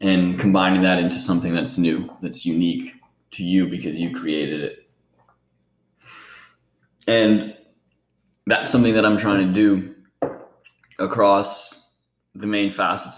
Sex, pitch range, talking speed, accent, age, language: male, 80-100 Hz, 125 wpm, American, 20-39, English